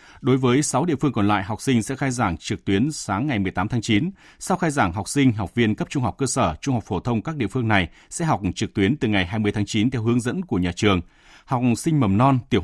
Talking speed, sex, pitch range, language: 280 wpm, male, 100-135 Hz, Vietnamese